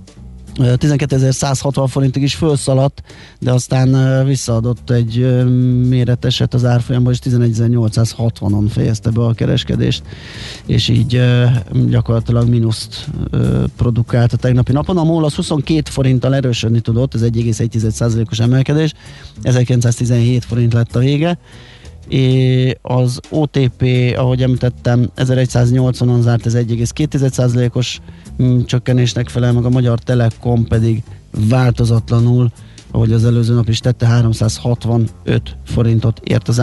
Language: Hungarian